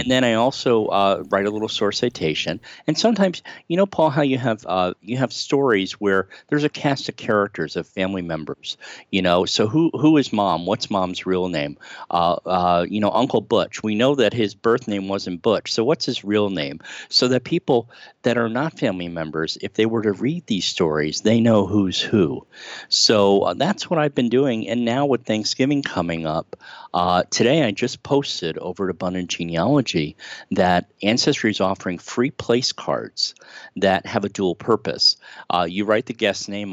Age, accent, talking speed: 50-69, American, 195 wpm